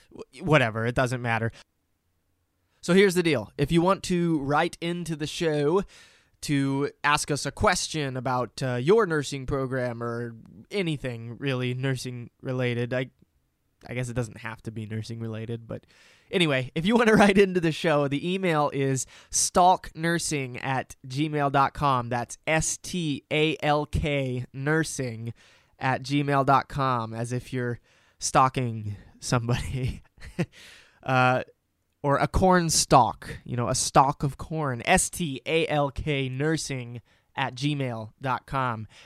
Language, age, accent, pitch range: English, 20-39, American, 125-150 Hz